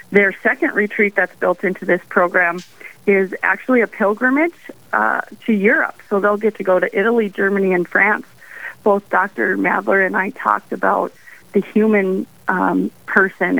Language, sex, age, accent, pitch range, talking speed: English, female, 40-59, American, 180-205 Hz, 160 wpm